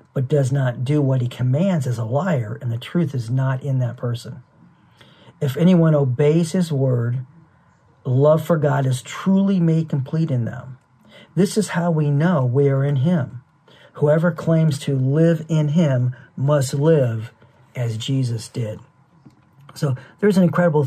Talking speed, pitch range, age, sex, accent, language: 160 wpm, 130-165 Hz, 50-69, male, American, English